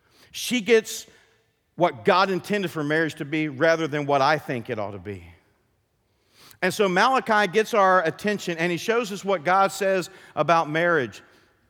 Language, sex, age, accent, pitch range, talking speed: English, male, 50-69, American, 135-195 Hz, 170 wpm